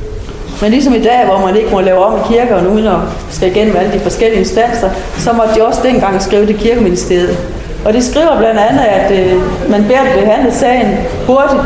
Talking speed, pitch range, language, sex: 210 wpm, 180-230 Hz, Danish, female